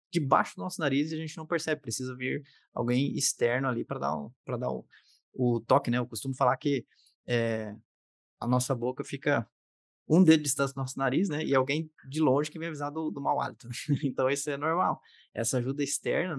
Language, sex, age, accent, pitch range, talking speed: Portuguese, male, 20-39, Brazilian, 120-150 Hz, 205 wpm